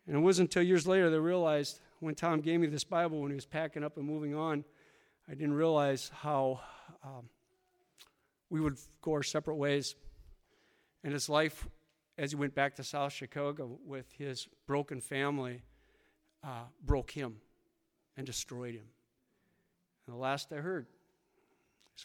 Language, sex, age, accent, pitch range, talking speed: English, male, 50-69, American, 140-180 Hz, 165 wpm